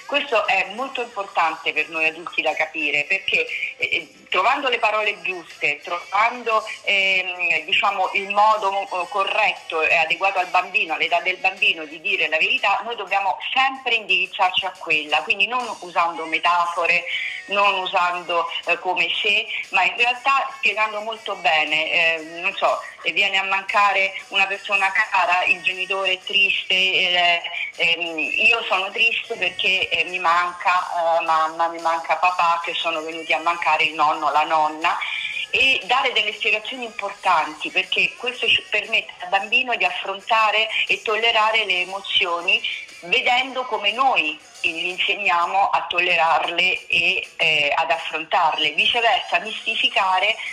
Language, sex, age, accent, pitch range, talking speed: Italian, female, 40-59, native, 170-215 Hz, 140 wpm